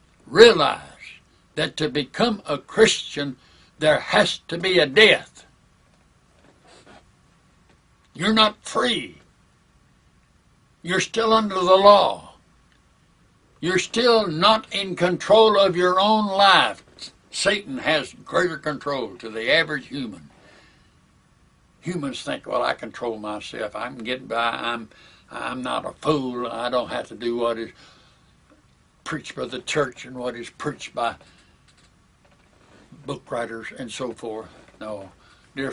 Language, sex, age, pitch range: English, male, 60-79, 120-185 Hz